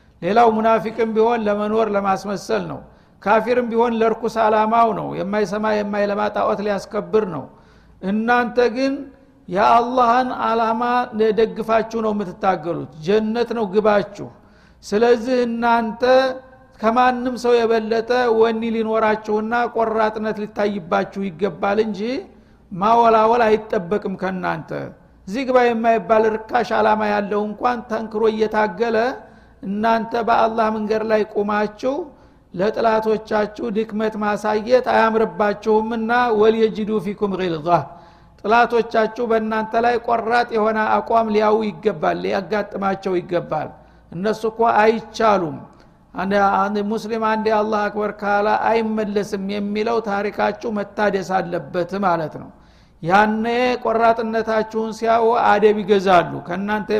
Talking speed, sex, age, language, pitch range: 95 wpm, male, 60-79, Amharic, 205-230 Hz